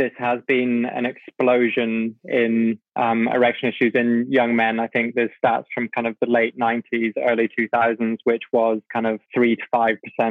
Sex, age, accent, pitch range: male, 20-39, British, 115-120 Hz